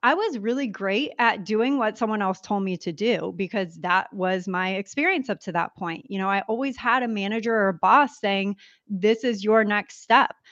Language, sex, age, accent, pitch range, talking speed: English, female, 30-49, American, 200-265 Hz, 215 wpm